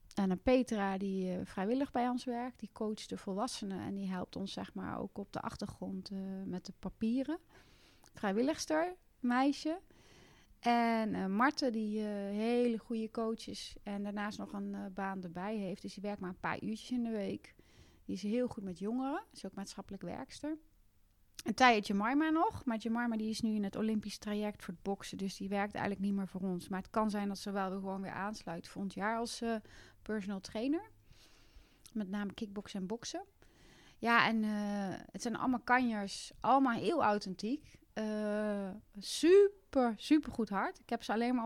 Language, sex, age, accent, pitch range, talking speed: Dutch, female, 30-49, Dutch, 200-240 Hz, 190 wpm